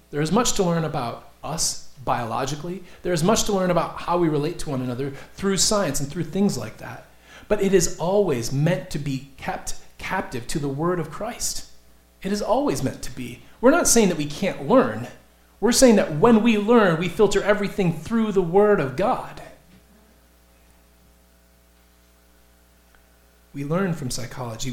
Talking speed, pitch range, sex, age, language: 175 wpm, 110-170 Hz, male, 30-49, English